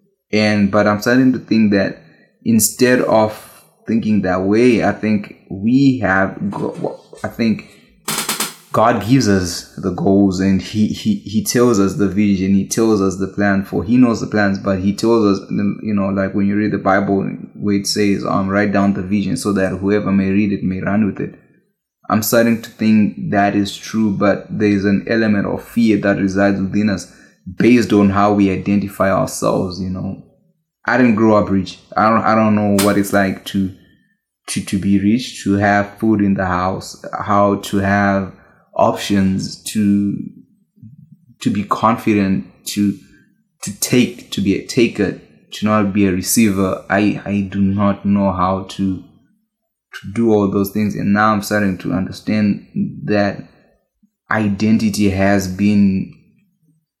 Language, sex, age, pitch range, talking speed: English, male, 20-39, 100-110 Hz, 170 wpm